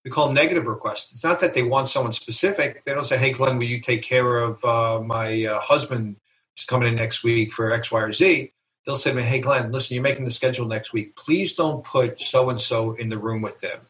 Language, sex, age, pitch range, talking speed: English, male, 40-59, 115-130 Hz, 245 wpm